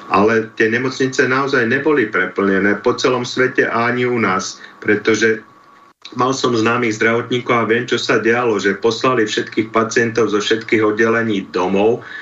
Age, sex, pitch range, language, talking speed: 40-59, male, 105-115 Hz, Slovak, 145 wpm